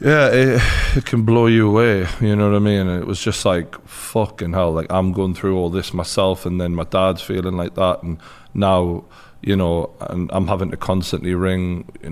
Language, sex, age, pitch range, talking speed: English, male, 30-49, 85-105 Hz, 215 wpm